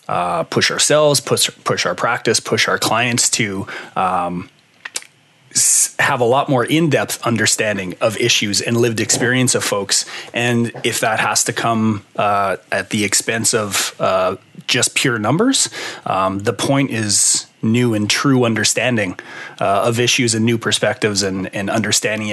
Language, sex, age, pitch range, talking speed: English, male, 30-49, 95-125 Hz, 155 wpm